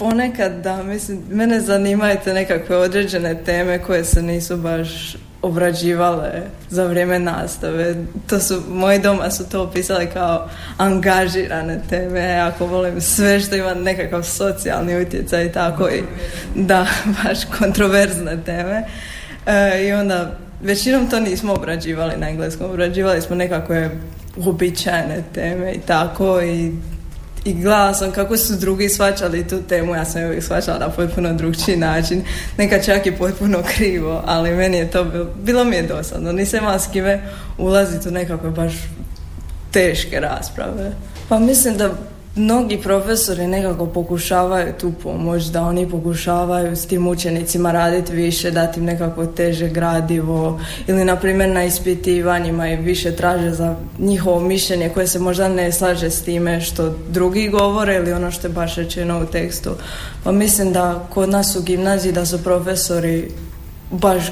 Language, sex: Croatian, female